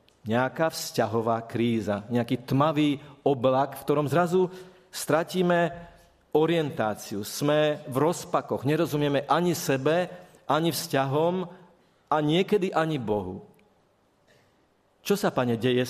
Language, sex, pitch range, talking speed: Slovak, male, 120-155 Hz, 100 wpm